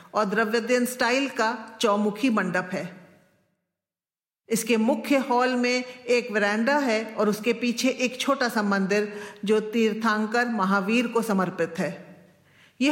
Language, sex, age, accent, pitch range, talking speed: Hindi, female, 50-69, native, 205-250 Hz, 125 wpm